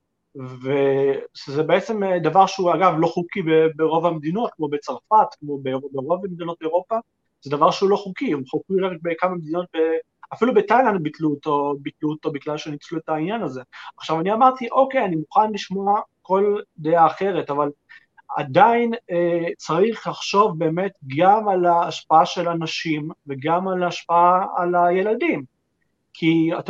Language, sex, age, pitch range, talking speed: Hebrew, male, 30-49, 155-195 Hz, 145 wpm